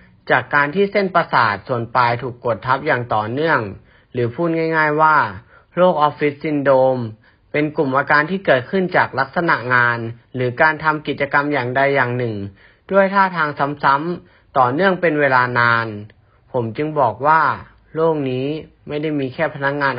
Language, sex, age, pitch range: Thai, male, 30-49, 120-155 Hz